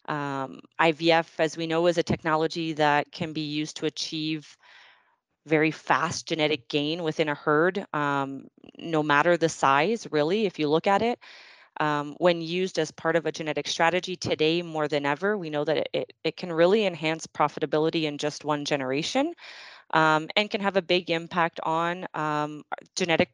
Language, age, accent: English, 30-49, American